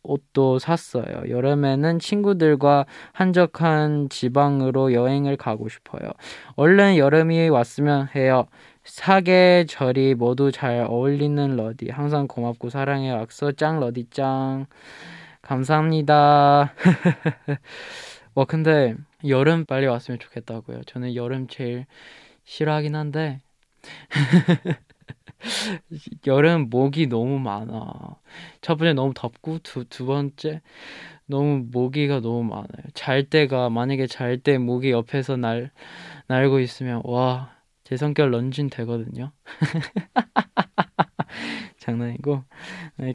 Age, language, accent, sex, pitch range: 20-39, Korean, native, male, 125-155 Hz